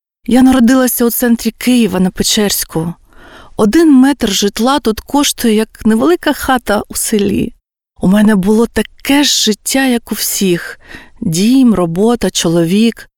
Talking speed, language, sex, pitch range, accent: 130 wpm, Ukrainian, female, 190-245 Hz, native